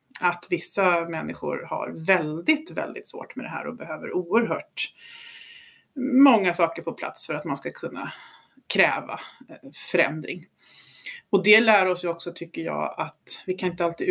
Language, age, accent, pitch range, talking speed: Swedish, 30-49, native, 175-245 Hz, 155 wpm